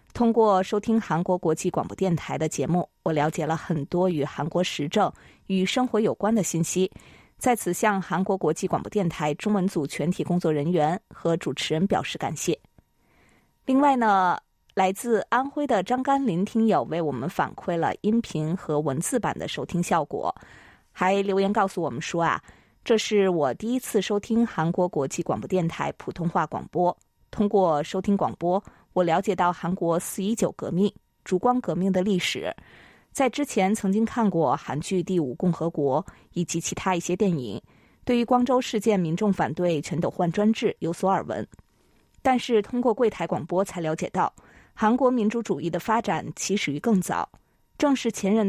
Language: Chinese